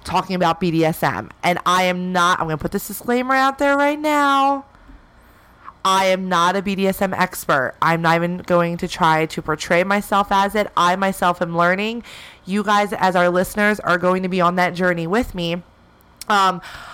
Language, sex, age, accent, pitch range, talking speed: English, female, 30-49, American, 165-195 Hz, 185 wpm